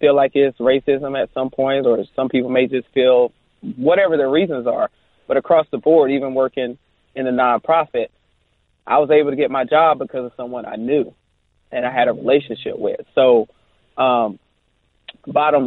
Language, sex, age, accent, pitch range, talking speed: English, male, 20-39, American, 125-145 Hz, 180 wpm